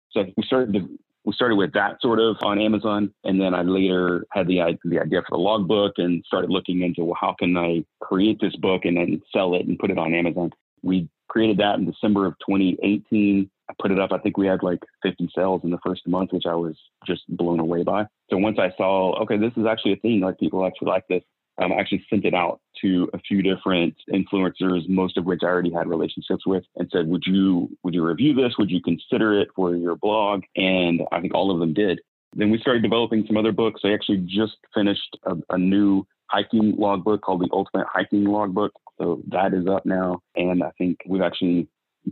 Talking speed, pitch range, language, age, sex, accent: 230 wpm, 90-105 Hz, English, 30-49, male, American